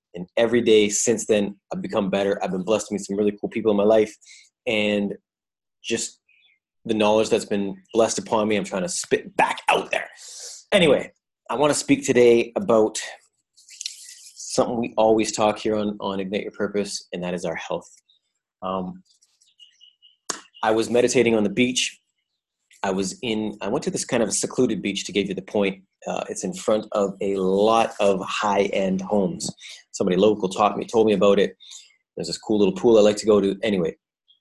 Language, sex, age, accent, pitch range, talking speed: English, male, 30-49, American, 100-115 Hz, 190 wpm